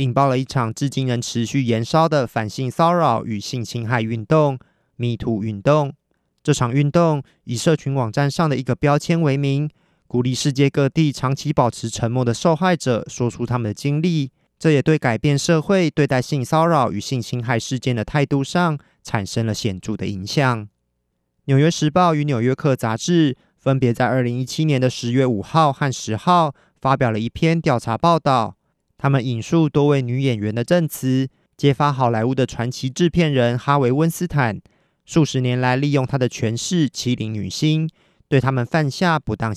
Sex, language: male, Chinese